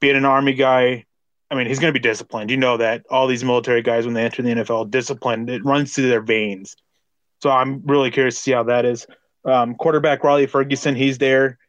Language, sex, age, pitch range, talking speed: English, male, 20-39, 120-140 Hz, 225 wpm